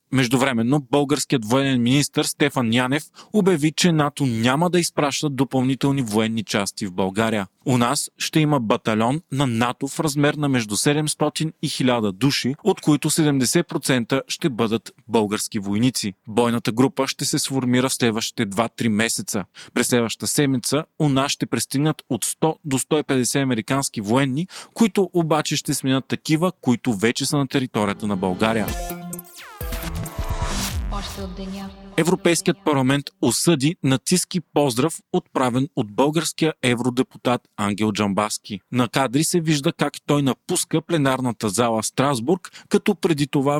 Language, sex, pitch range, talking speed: Bulgarian, male, 120-155 Hz, 135 wpm